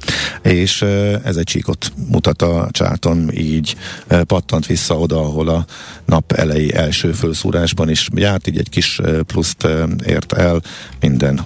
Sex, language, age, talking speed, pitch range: male, Hungarian, 50-69, 135 wpm, 80-100 Hz